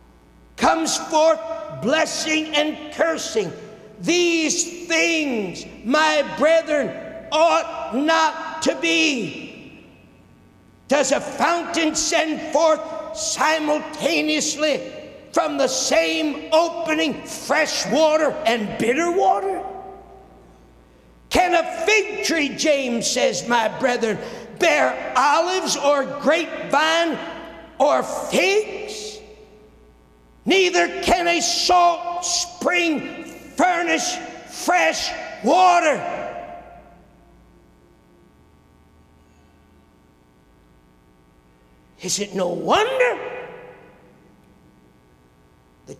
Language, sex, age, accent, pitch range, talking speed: English, male, 60-79, American, 235-350 Hz, 70 wpm